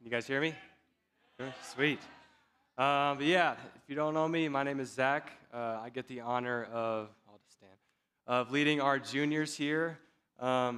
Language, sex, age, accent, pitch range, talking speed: English, male, 20-39, American, 120-150 Hz, 180 wpm